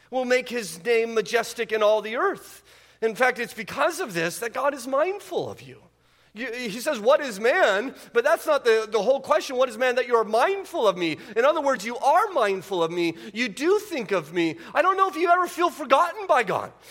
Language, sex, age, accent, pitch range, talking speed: English, male, 40-59, American, 175-275 Hz, 230 wpm